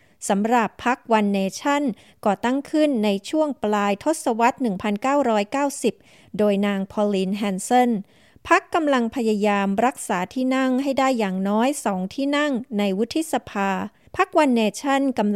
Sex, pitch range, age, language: female, 210-260 Hz, 20-39, Thai